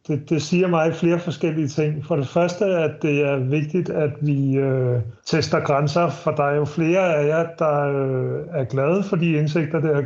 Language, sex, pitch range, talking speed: Danish, male, 135-160 Hz, 210 wpm